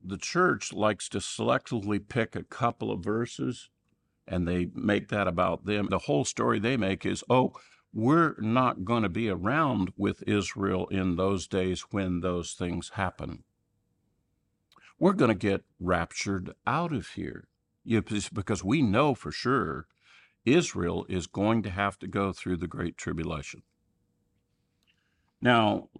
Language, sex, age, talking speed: English, male, 50-69, 140 wpm